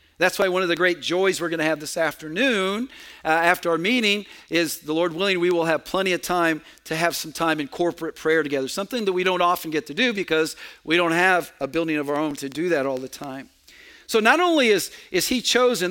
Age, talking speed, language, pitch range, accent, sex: 50-69, 245 wpm, English, 165-230 Hz, American, male